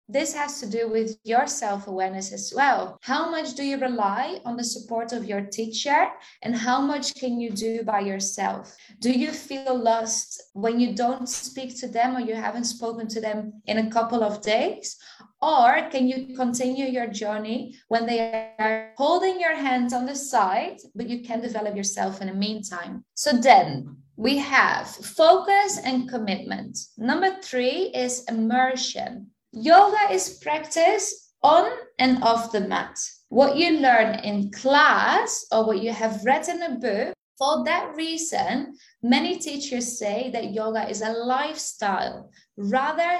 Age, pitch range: 20-39, 225-285 Hz